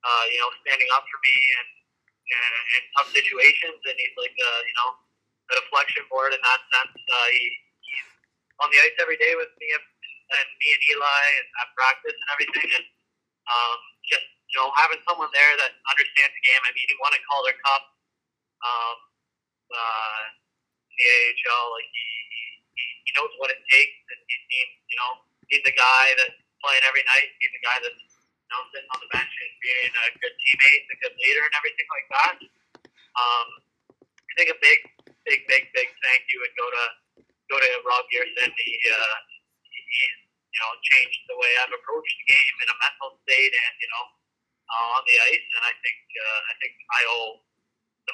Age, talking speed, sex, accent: 30-49, 195 wpm, male, American